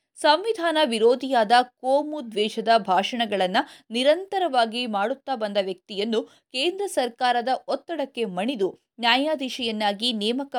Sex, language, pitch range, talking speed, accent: female, Kannada, 220-285 Hz, 80 wpm, native